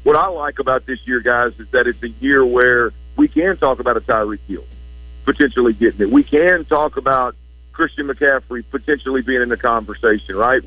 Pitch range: 120-150 Hz